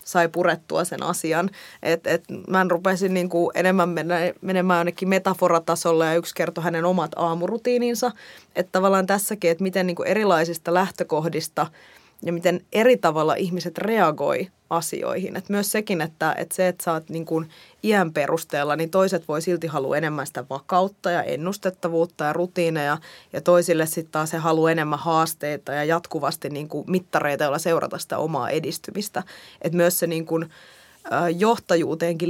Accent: native